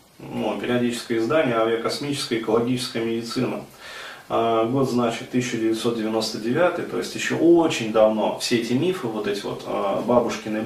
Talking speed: 130 wpm